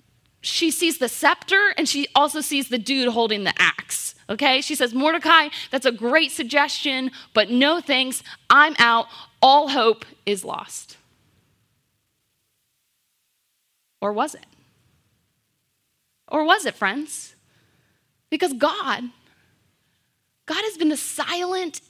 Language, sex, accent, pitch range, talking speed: English, female, American, 245-310 Hz, 120 wpm